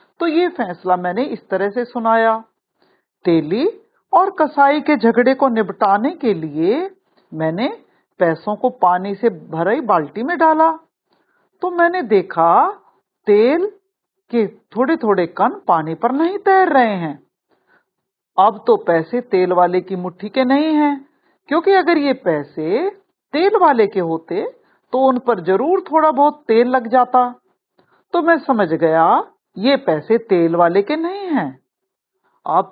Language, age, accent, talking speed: Hindi, 50-69, native, 145 wpm